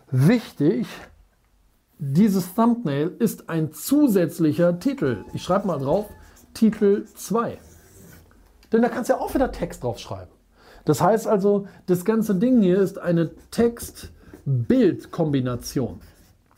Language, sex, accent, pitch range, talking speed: German, male, German, 130-200 Hz, 120 wpm